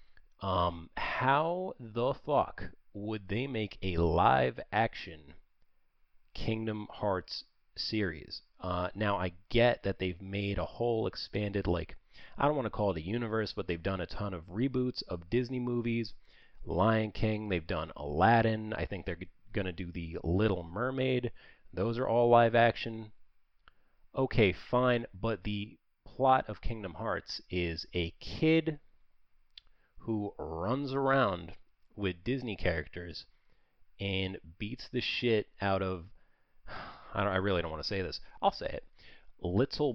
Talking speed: 140 wpm